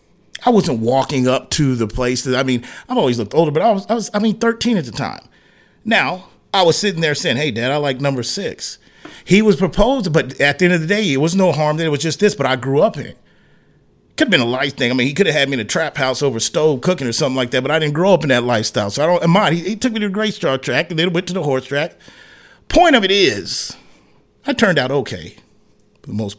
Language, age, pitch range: English, 40-59, 125-180 Hz